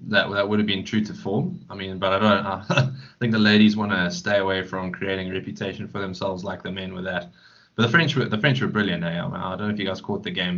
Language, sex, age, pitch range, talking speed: English, male, 20-39, 90-105 Hz, 295 wpm